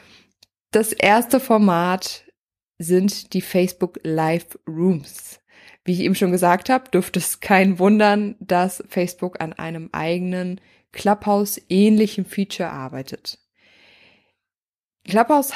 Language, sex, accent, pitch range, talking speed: German, female, German, 175-220 Hz, 95 wpm